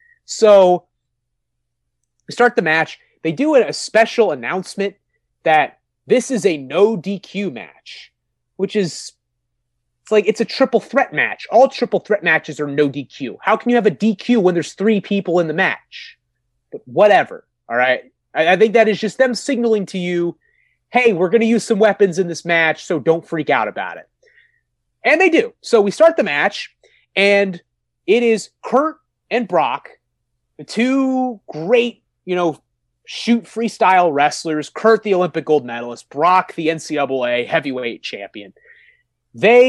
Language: English